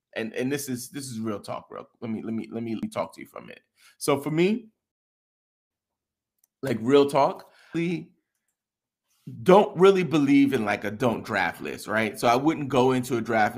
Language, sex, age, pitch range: English, male, 30-49, 110-145 Hz